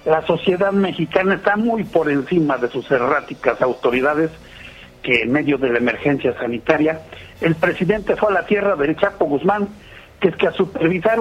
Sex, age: male, 50-69